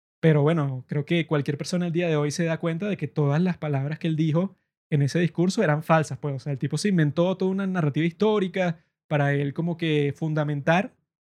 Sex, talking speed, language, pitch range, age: male, 225 wpm, Spanish, 150-180 Hz, 20-39